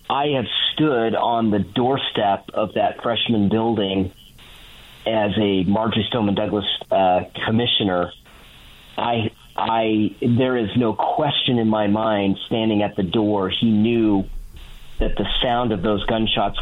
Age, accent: 40-59, American